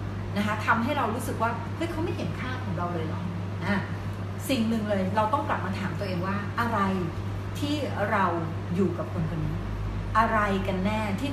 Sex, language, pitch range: female, Thai, 95-100 Hz